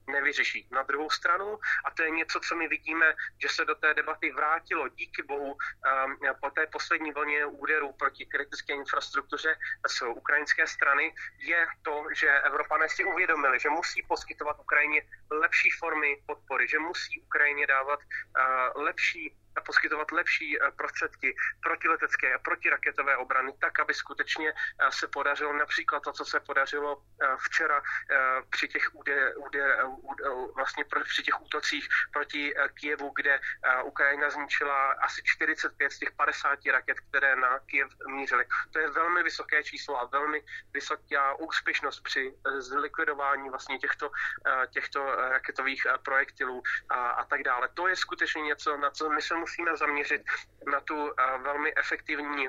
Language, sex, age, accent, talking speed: Czech, male, 30-49, native, 140 wpm